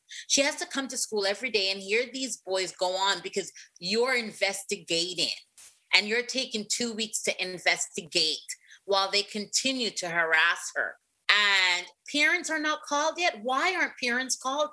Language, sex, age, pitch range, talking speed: English, female, 30-49, 195-270 Hz, 165 wpm